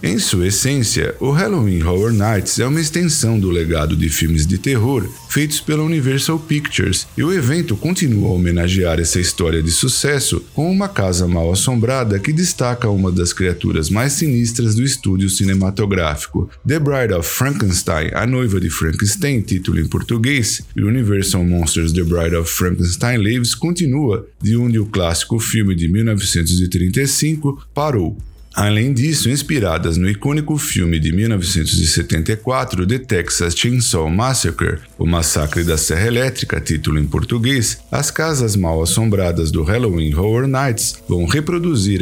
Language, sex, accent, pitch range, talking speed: Portuguese, male, Brazilian, 85-130 Hz, 145 wpm